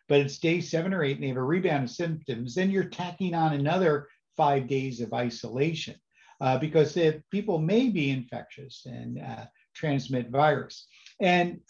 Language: English